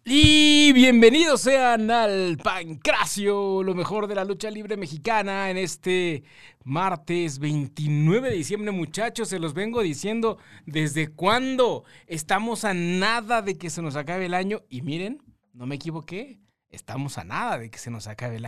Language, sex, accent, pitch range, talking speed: Spanish, male, Mexican, 125-180 Hz, 160 wpm